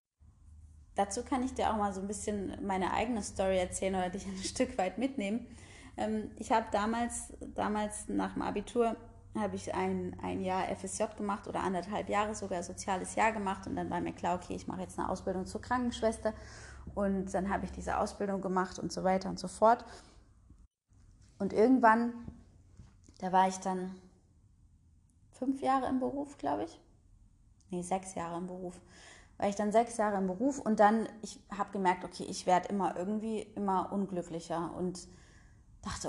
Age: 20-39